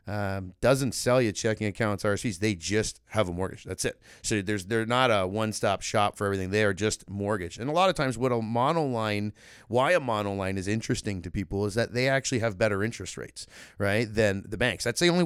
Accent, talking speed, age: American, 225 wpm, 30-49